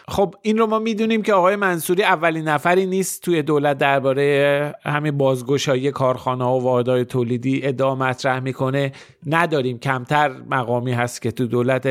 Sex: male